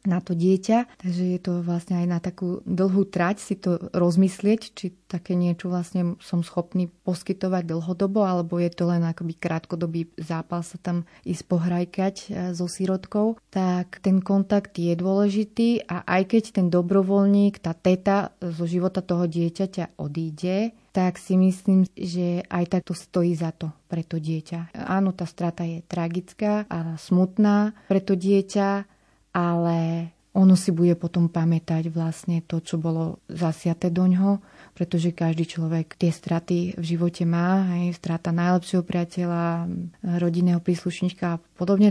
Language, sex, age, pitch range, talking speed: Slovak, female, 30-49, 170-195 Hz, 150 wpm